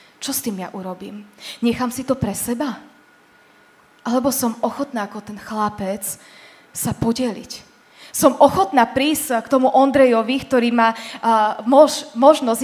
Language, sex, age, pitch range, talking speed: Slovak, female, 20-39, 205-245 Hz, 130 wpm